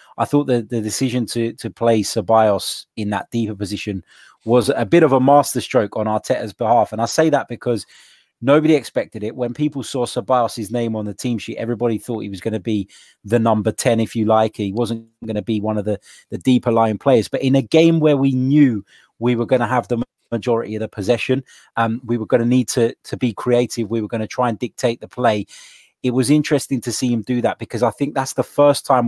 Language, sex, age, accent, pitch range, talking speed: English, male, 20-39, British, 110-130 Hz, 235 wpm